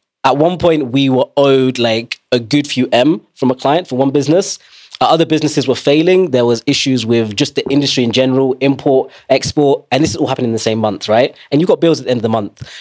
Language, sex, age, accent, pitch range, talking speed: English, male, 20-39, British, 120-150 Hz, 250 wpm